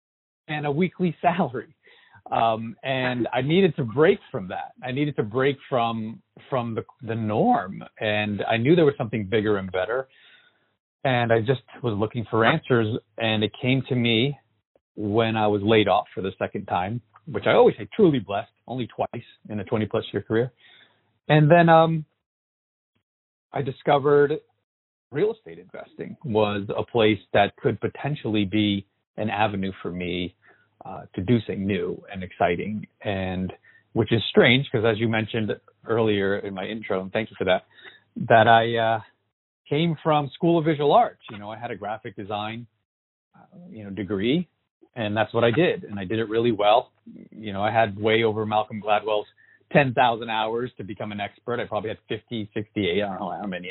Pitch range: 105-130 Hz